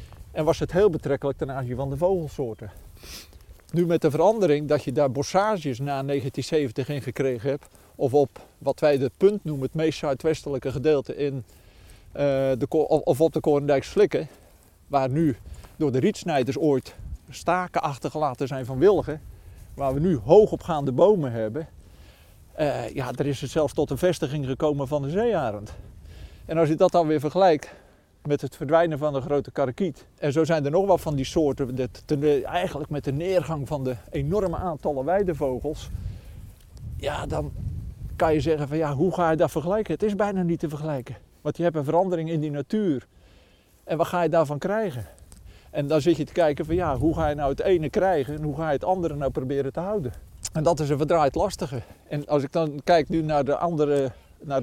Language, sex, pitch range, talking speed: Dutch, male, 135-165 Hz, 195 wpm